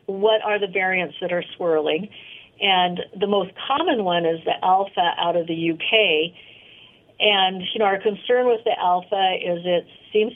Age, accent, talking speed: 50-69, American, 175 wpm